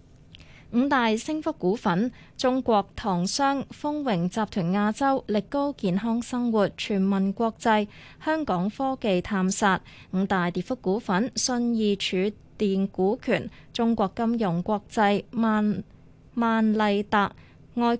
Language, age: Chinese, 20-39